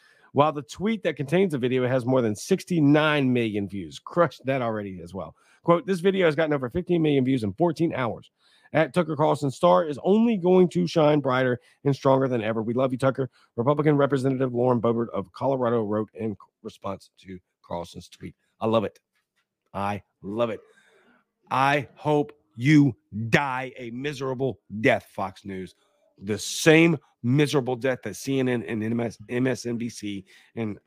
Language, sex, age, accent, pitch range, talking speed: English, male, 40-59, American, 115-145 Hz, 165 wpm